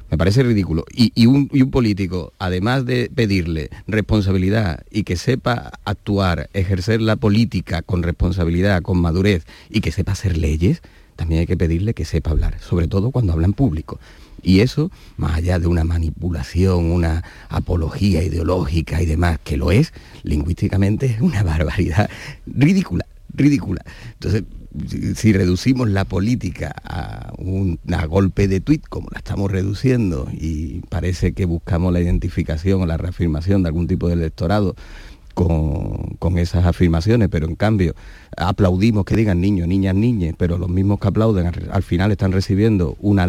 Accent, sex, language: Spanish, male, Spanish